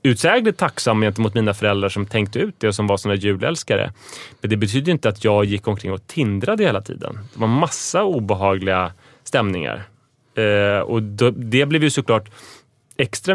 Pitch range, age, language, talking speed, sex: 105-130 Hz, 30-49, English, 170 wpm, male